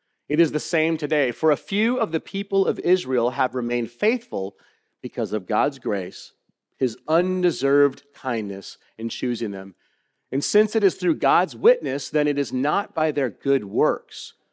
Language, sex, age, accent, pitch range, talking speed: English, male, 40-59, American, 120-180 Hz, 170 wpm